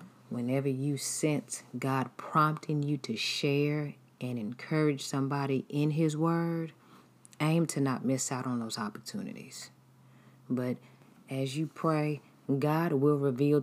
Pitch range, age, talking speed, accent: 125-150 Hz, 30-49, 130 wpm, American